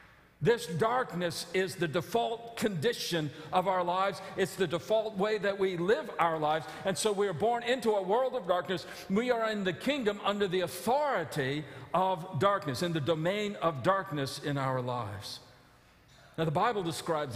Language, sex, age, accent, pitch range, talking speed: English, male, 50-69, American, 130-185 Hz, 175 wpm